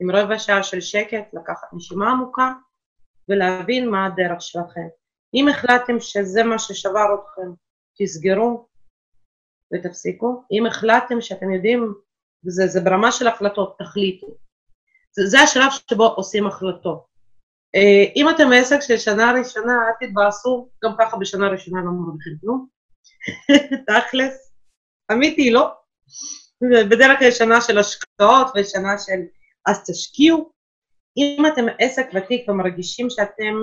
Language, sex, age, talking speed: Hebrew, female, 30-49, 120 wpm